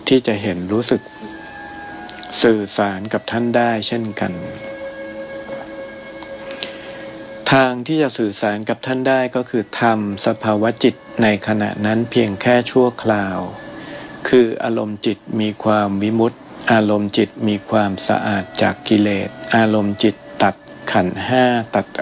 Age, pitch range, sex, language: 60-79, 105-120 Hz, male, Thai